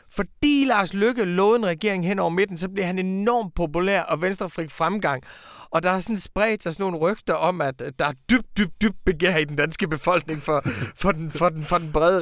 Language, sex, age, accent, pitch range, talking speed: Danish, male, 30-49, native, 155-200 Hz, 220 wpm